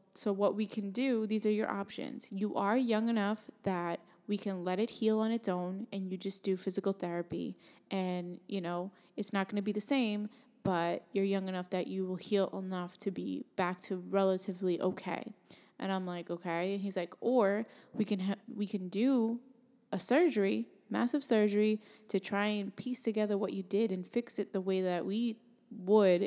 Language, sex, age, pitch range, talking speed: English, female, 20-39, 185-215 Hz, 200 wpm